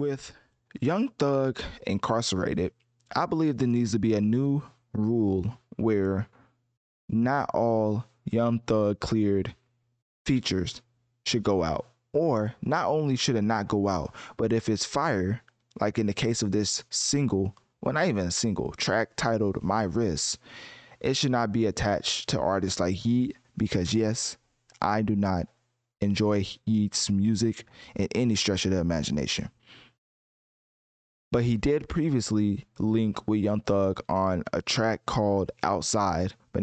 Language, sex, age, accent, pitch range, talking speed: English, male, 20-39, American, 100-125 Hz, 145 wpm